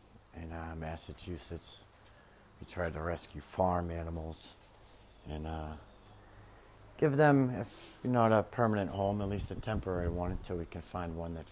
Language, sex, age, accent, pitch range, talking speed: English, male, 50-69, American, 85-105 Hz, 150 wpm